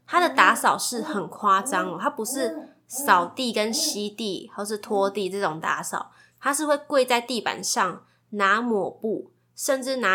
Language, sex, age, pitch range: Chinese, female, 20-39, 195-250 Hz